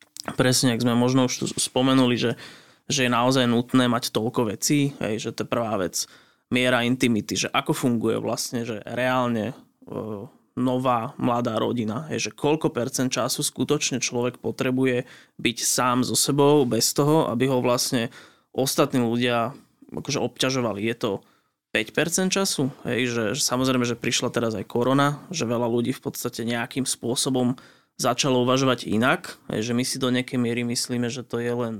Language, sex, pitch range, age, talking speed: Slovak, male, 120-130 Hz, 20-39, 155 wpm